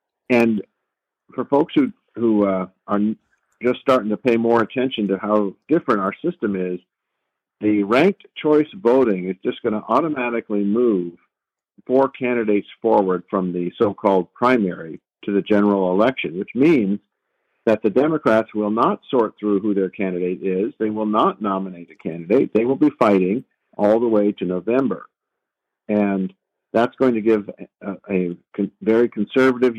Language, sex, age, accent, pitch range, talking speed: English, male, 50-69, American, 100-125 Hz, 160 wpm